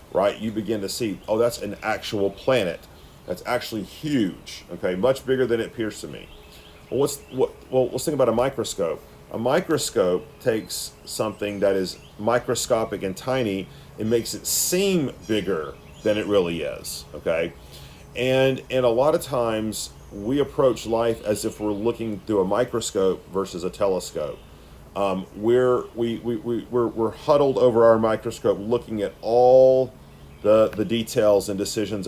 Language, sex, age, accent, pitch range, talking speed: English, male, 40-59, American, 95-120 Hz, 165 wpm